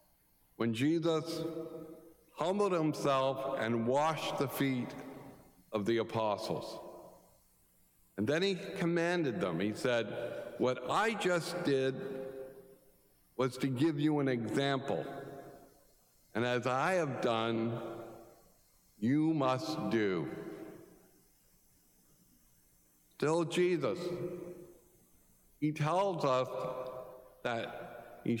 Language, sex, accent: English, male, American